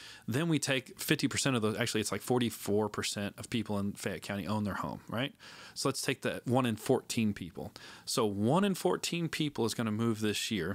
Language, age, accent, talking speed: English, 30-49, American, 210 wpm